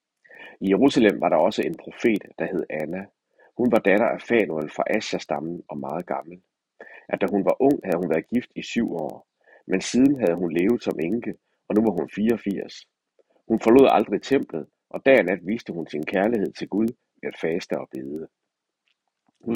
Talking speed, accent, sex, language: 195 wpm, native, male, Danish